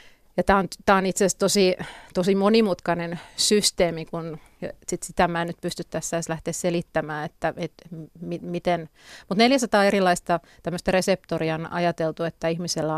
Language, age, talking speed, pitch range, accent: Finnish, 30-49, 140 wpm, 170-205 Hz, native